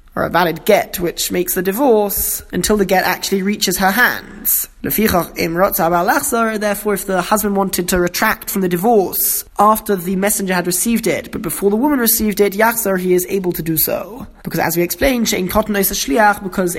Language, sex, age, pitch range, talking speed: English, male, 20-39, 180-215 Hz, 170 wpm